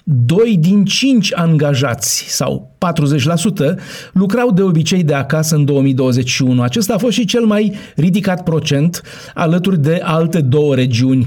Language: Romanian